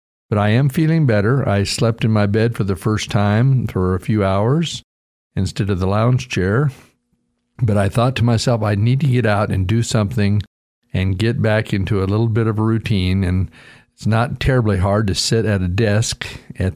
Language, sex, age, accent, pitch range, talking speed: English, male, 50-69, American, 100-120 Hz, 205 wpm